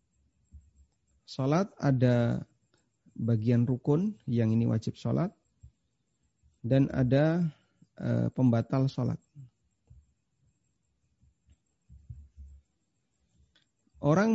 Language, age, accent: Indonesian, 30-49, native